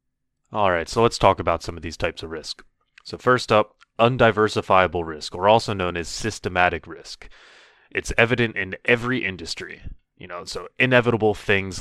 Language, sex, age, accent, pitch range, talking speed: English, male, 30-49, American, 90-105 Hz, 165 wpm